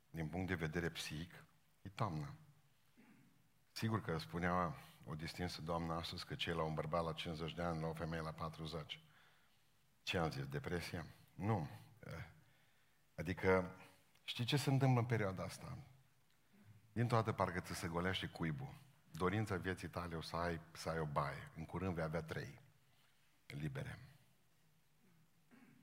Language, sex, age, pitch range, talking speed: Romanian, male, 50-69, 90-135 Hz, 140 wpm